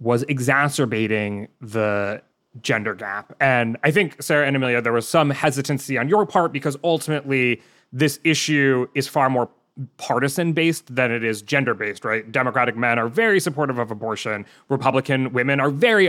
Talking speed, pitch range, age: 155 wpm, 115-150 Hz, 30-49